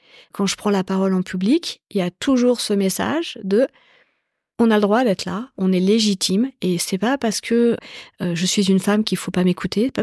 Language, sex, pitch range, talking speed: French, female, 180-225 Hz, 240 wpm